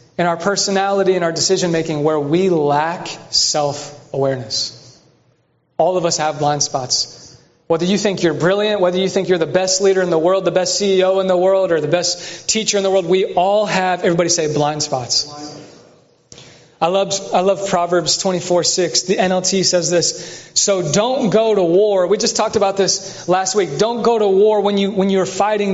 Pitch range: 155-190 Hz